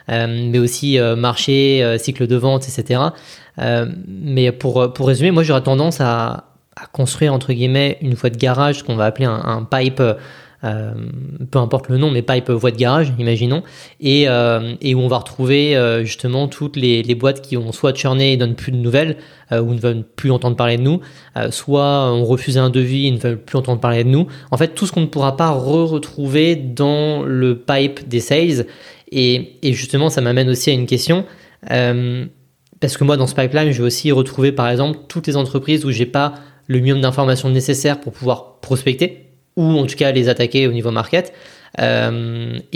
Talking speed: 210 wpm